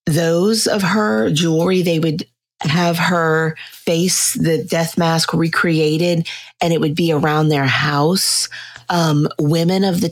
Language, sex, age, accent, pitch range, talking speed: English, female, 30-49, American, 155-175 Hz, 140 wpm